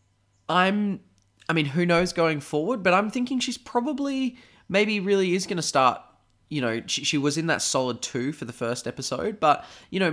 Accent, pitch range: Australian, 115-170 Hz